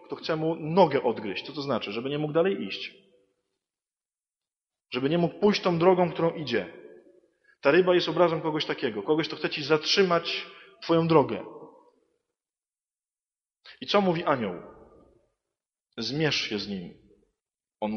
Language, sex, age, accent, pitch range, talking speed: English, male, 20-39, Polish, 130-175 Hz, 145 wpm